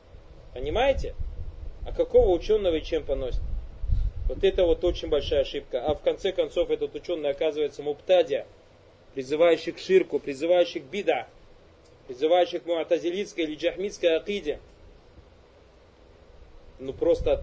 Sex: male